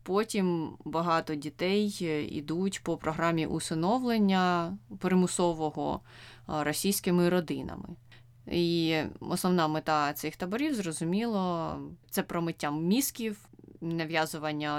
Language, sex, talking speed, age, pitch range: Ukrainian, female, 80 wpm, 20-39, 150-180 Hz